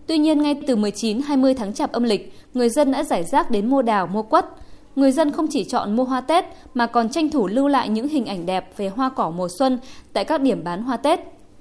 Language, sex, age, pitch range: Vietnamese, female, 20-39, 210-275 Hz